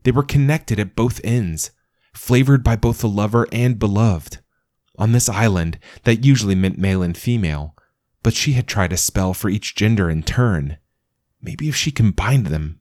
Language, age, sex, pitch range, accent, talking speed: English, 30-49, male, 85-115 Hz, American, 180 wpm